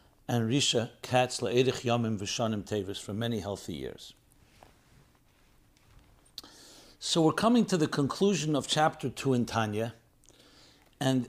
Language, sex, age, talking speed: English, male, 60-79, 120 wpm